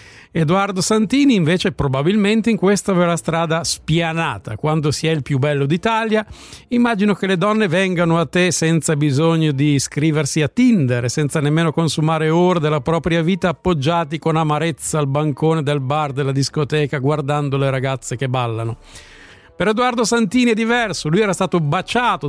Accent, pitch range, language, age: native, 150-190 Hz, Italian, 50-69